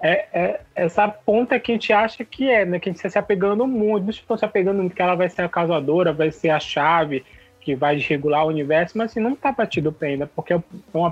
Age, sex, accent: 20-39, male, Brazilian